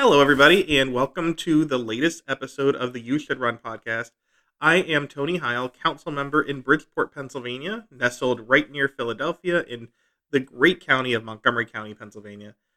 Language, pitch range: English, 120-155 Hz